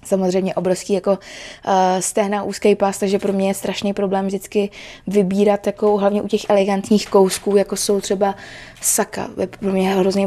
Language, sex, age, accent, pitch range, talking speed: Czech, female, 20-39, native, 185-210 Hz, 170 wpm